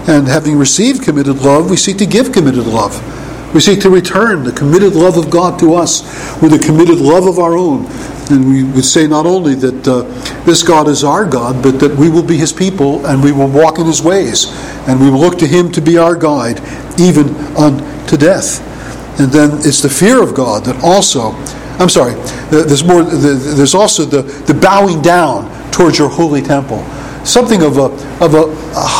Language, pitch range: English, 140-175 Hz